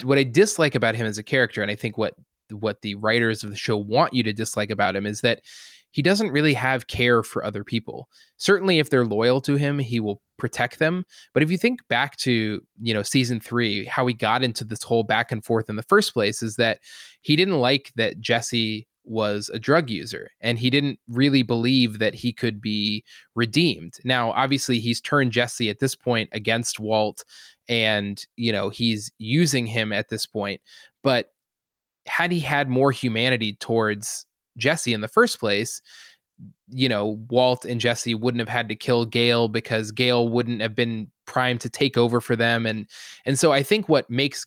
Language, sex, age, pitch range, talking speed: English, male, 20-39, 110-135 Hz, 200 wpm